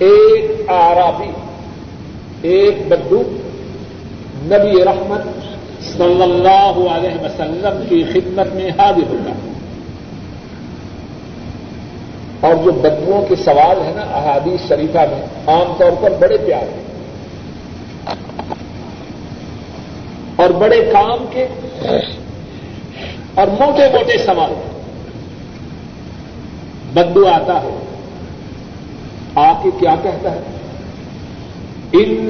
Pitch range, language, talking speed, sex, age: 185-275 Hz, Urdu, 85 wpm, male, 60-79